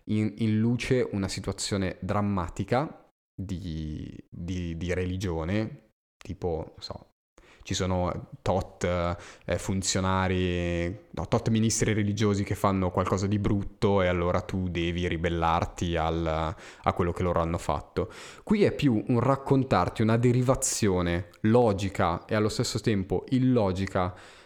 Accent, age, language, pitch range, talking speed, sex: native, 20-39, Italian, 90-110 Hz, 130 wpm, male